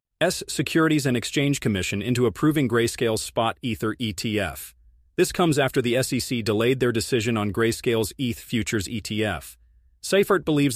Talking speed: 145 wpm